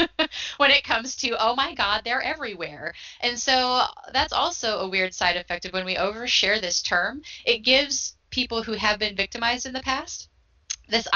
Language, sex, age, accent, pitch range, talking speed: English, female, 10-29, American, 165-220 Hz, 185 wpm